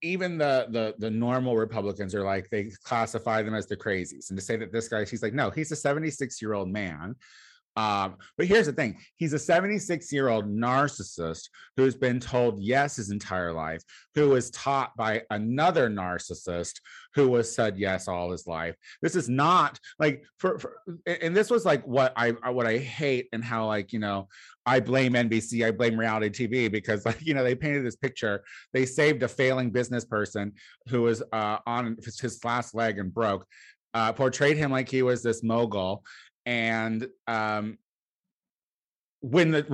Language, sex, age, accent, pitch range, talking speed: English, male, 30-49, American, 110-155 Hz, 180 wpm